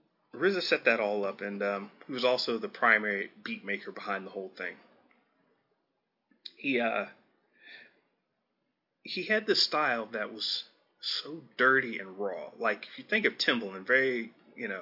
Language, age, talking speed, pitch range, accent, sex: English, 30-49, 160 wpm, 100-120 Hz, American, male